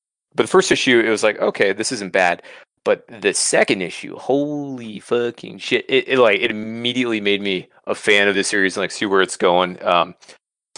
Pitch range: 100-125 Hz